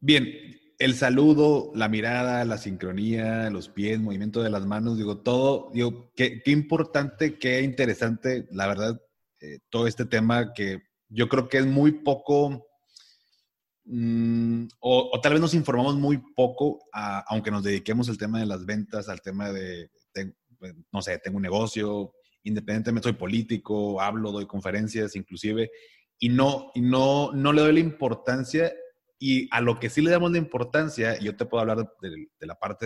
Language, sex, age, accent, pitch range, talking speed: Spanish, male, 30-49, Mexican, 105-135 Hz, 175 wpm